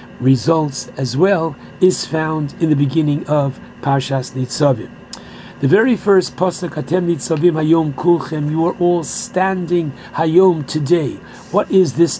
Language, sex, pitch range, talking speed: English, male, 150-185 Hz, 135 wpm